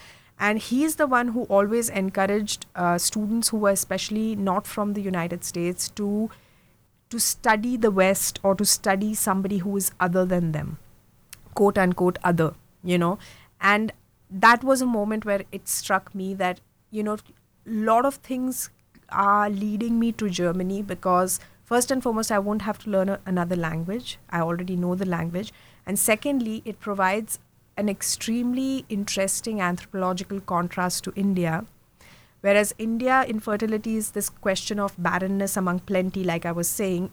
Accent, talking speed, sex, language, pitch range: Indian, 160 wpm, female, English, 185-220 Hz